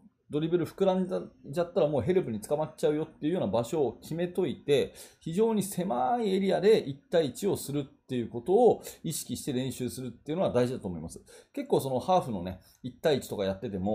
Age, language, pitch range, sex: 30-49, Japanese, 115-190 Hz, male